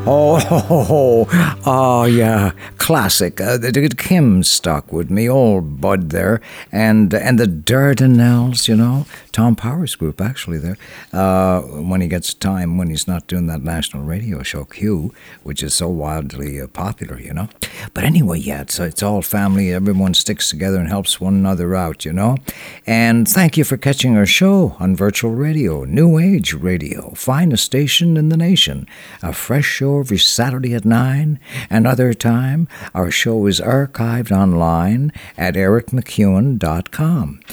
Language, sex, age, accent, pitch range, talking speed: English, male, 60-79, American, 95-135 Hz, 175 wpm